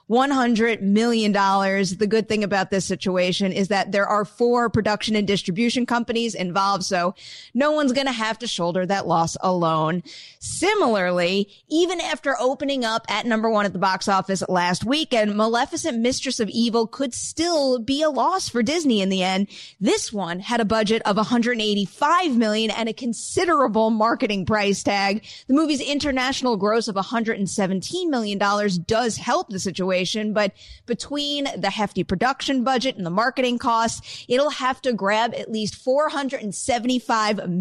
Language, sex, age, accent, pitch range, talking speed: English, female, 30-49, American, 195-260 Hz, 155 wpm